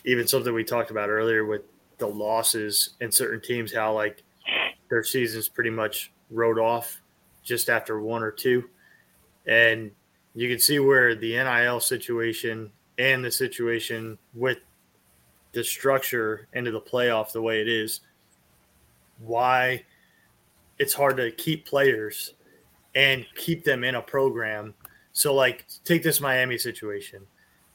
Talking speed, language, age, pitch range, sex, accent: 140 wpm, English, 20-39, 115-135 Hz, male, American